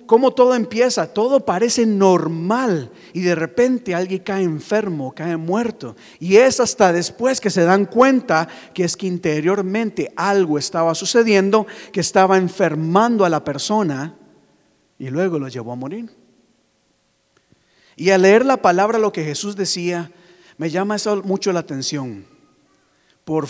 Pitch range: 160-210 Hz